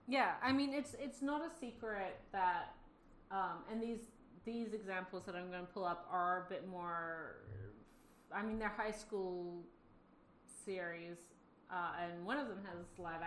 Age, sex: 30-49, female